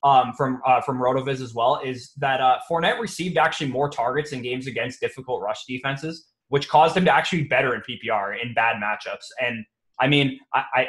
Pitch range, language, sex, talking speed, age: 130-160 Hz, English, male, 205 wpm, 20-39